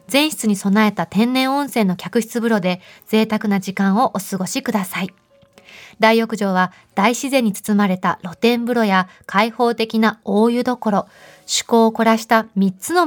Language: Japanese